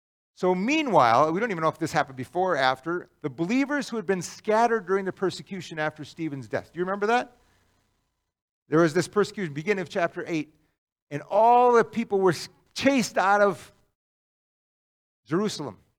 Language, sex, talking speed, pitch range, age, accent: English, male, 170 wpm, 130-195 Hz, 50-69, American